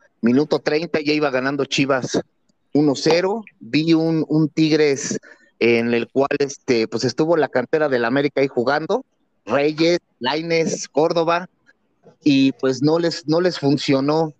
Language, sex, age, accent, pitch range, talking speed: Spanish, male, 30-49, Mexican, 130-160 Hz, 140 wpm